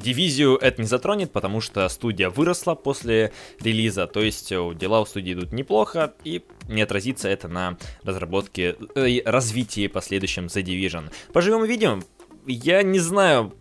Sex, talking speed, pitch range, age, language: male, 155 wpm, 95-135 Hz, 20-39, Russian